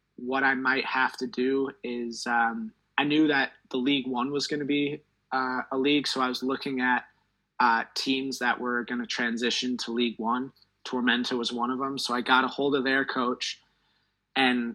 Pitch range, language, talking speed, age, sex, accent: 120-135 Hz, English, 200 wpm, 20-39, male, American